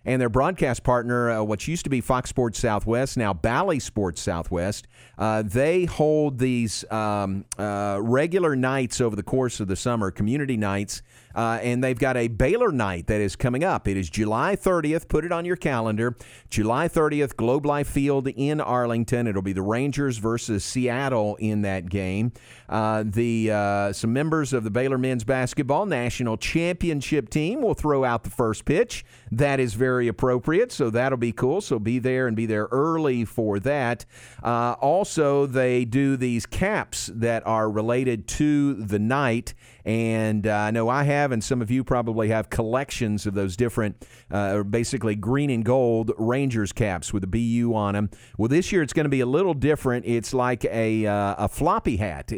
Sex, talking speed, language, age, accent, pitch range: male, 185 wpm, English, 50-69, American, 110-130 Hz